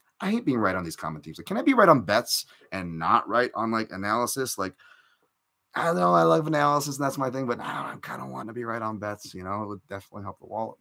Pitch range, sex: 100-120 Hz, male